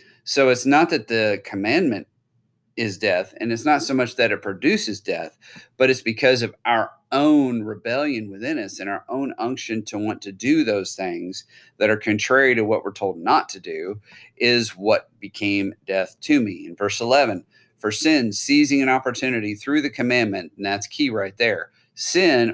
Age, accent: 40-59, American